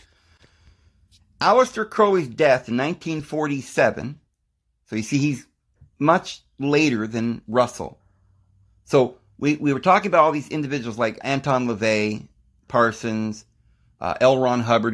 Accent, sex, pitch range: American, male, 100-130 Hz